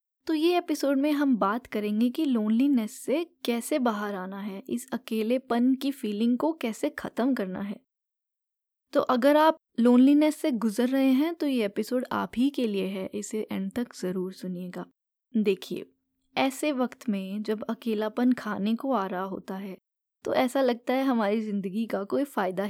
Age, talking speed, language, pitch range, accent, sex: 20-39, 170 wpm, Hindi, 215-280 Hz, native, female